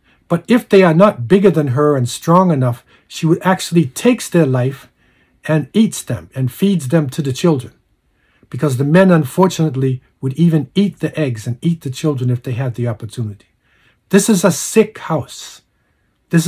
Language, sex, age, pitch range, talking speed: English, male, 50-69, 130-175 Hz, 180 wpm